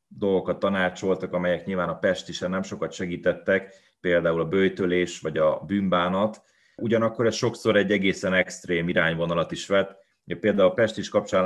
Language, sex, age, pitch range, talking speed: Hungarian, male, 30-49, 90-100 Hz, 145 wpm